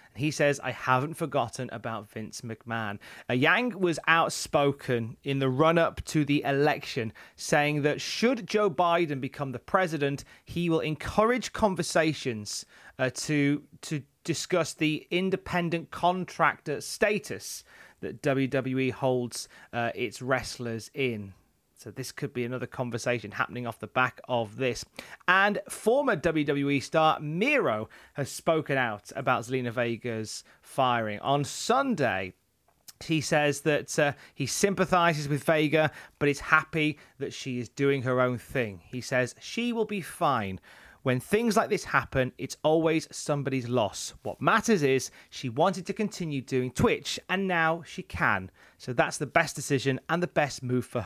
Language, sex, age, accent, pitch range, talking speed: English, male, 30-49, British, 125-160 Hz, 150 wpm